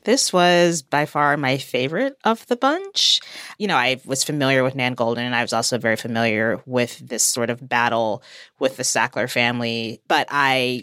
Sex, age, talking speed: female, 30-49, 190 wpm